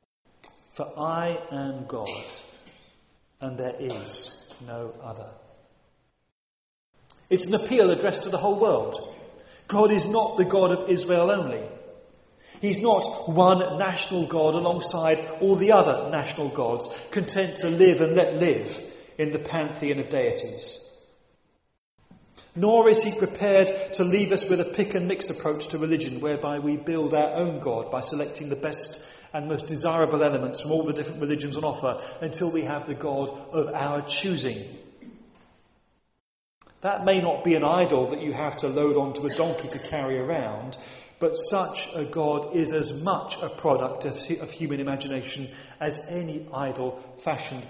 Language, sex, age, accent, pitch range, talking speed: English, male, 40-59, British, 145-190 Hz, 155 wpm